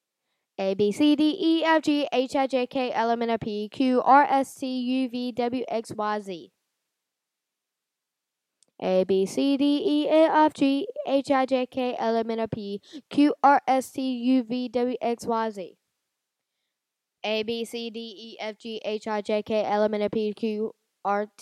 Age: 10-29